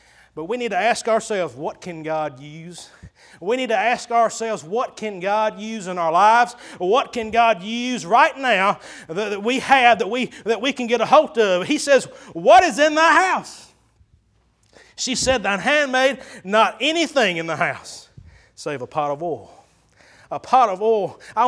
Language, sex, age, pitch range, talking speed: English, male, 30-49, 210-285 Hz, 180 wpm